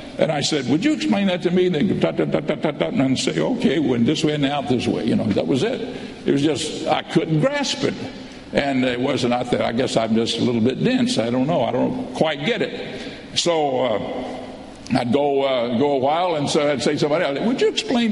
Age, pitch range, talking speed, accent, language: 60-79, 150-195 Hz, 260 wpm, American, English